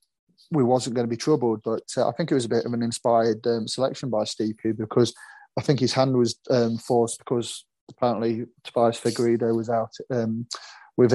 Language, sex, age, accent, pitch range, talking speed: English, male, 30-49, British, 115-125 Hz, 200 wpm